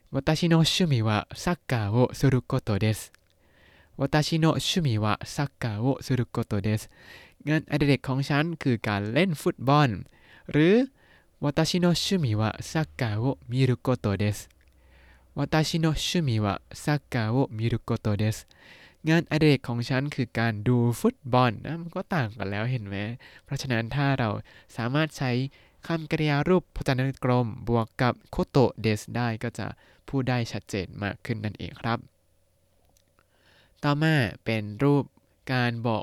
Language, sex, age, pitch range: Thai, male, 20-39, 105-140 Hz